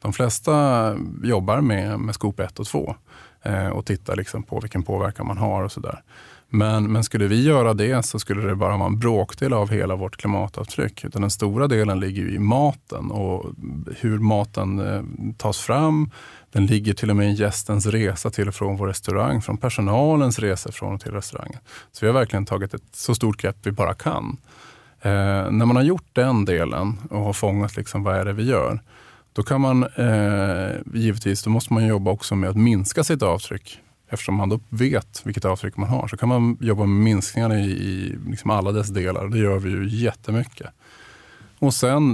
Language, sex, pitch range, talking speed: Swedish, male, 100-120 Hz, 200 wpm